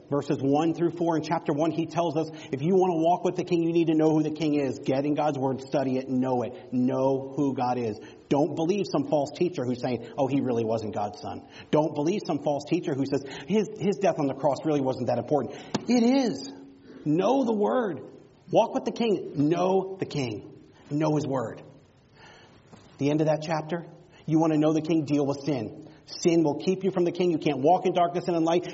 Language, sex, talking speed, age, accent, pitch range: English, male, 235 wpm, 40-59, American, 130-170 Hz